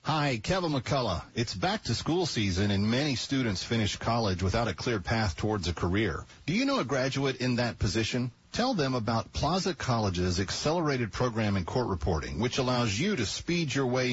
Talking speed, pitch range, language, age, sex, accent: 190 wpm, 105-150 Hz, English, 40-59, male, American